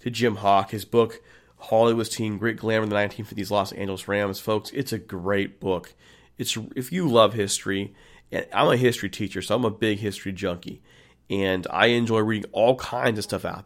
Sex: male